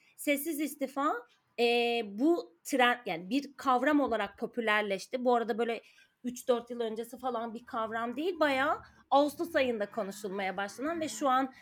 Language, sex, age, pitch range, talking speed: Turkish, female, 30-49, 220-265 Hz, 145 wpm